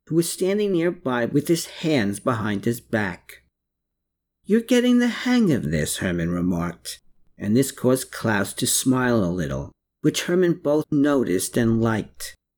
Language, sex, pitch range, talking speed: English, male, 115-160 Hz, 155 wpm